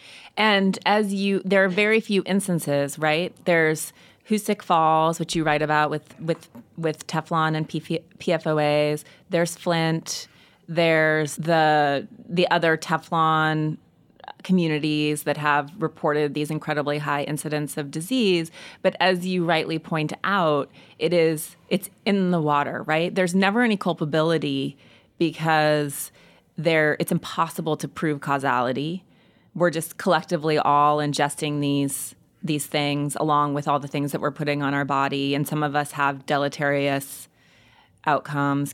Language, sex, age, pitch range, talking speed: English, female, 30-49, 145-170 Hz, 135 wpm